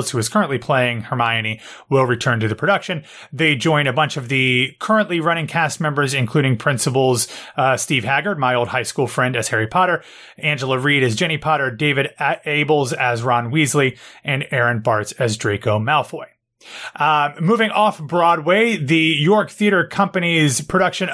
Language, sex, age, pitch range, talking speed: English, male, 30-49, 130-170 Hz, 165 wpm